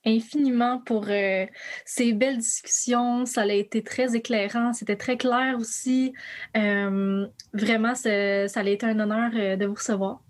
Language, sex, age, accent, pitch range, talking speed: French, female, 20-39, Canadian, 205-245 Hz, 145 wpm